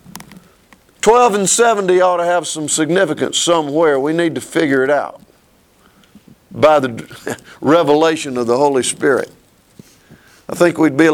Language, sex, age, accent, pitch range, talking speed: English, male, 50-69, American, 150-195 Hz, 145 wpm